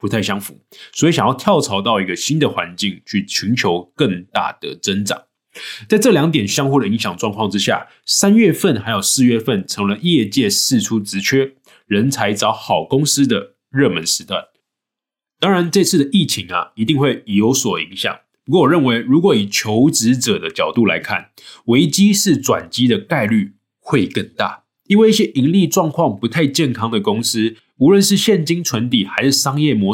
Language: Chinese